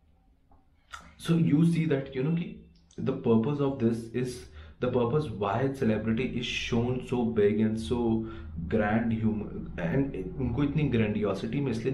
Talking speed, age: 170 wpm, 30-49